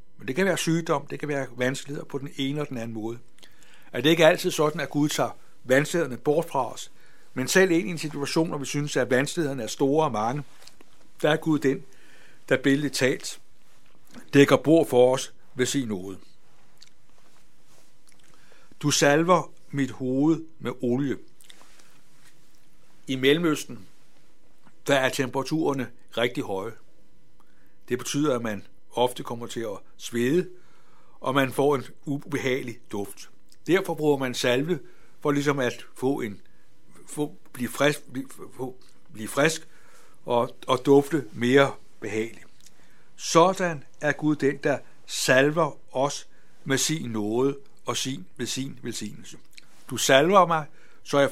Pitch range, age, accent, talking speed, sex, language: 125-150 Hz, 60-79, native, 145 wpm, male, Danish